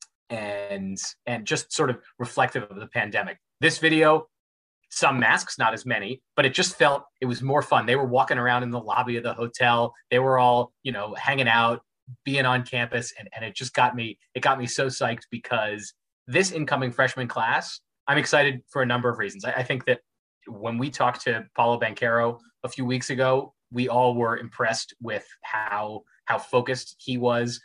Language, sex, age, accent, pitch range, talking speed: English, male, 30-49, American, 115-130 Hz, 200 wpm